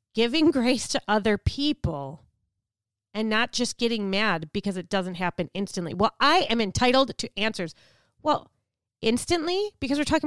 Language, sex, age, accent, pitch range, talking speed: English, female, 30-49, American, 145-220 Hz, 150 wpm